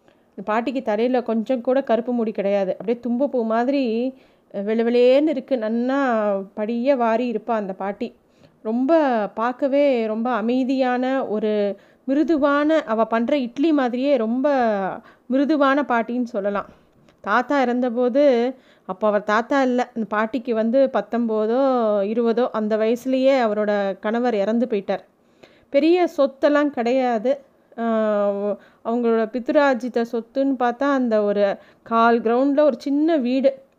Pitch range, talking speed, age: 220-270 Hz, 120 wpm, 20-39